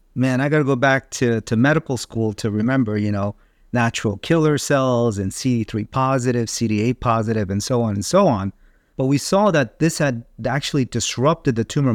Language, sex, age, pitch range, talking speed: English, male, 40-59, 110-135 Hz, 190 wpm